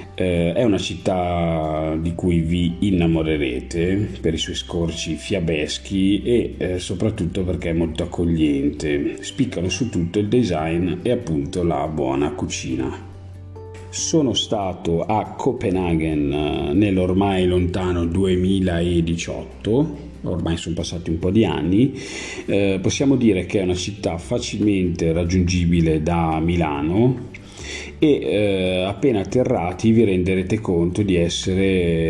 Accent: native